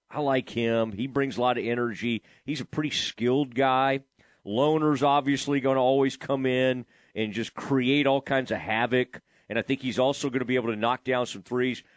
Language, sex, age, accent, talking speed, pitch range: English, male, 40-59, American, 210 wpm, 125-155 Hz